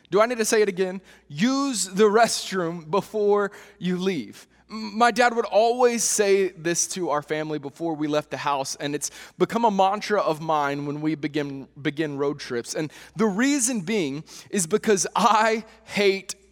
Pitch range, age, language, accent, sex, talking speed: 155-215 Hz, 20-39, English, American, male, 175 wpm